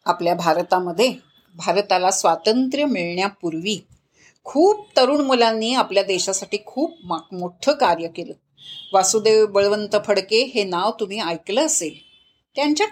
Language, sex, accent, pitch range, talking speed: Marathi, female, native, 205-290 Hz, 110 wpm